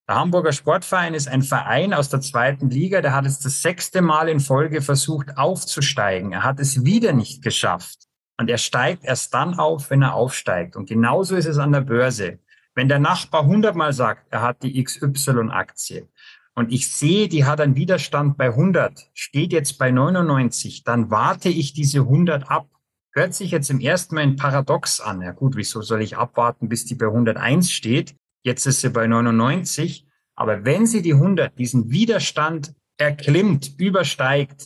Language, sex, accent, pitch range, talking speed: German, male, German, 125-155 Hz, 180 wpm